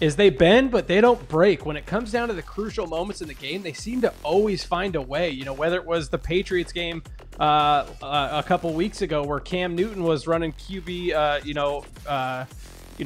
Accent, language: American, English